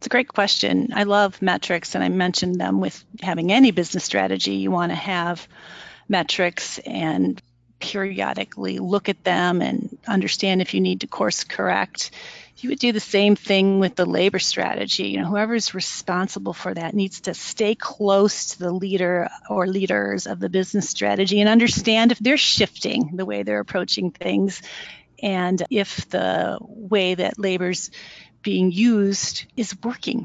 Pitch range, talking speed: 175-205 Hz, 165 wpm